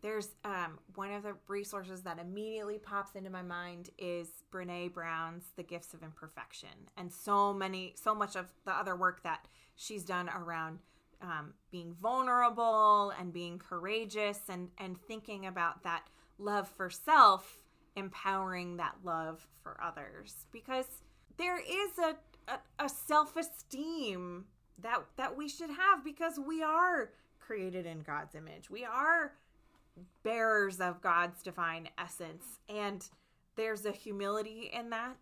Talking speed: 140 wpm